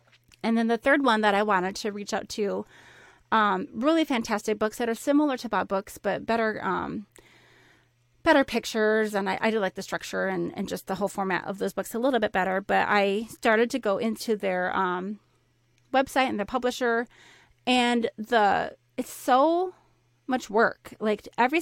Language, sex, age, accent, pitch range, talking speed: English, female, 30-49, American, 200-245 Hz, 185 wpm